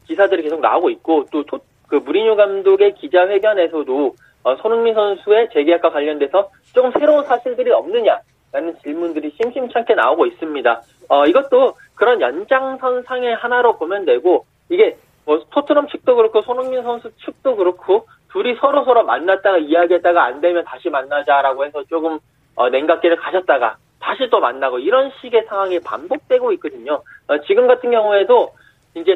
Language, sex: Korean, male